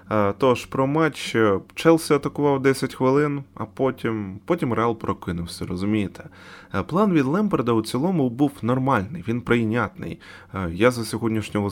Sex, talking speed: male, 130 wpm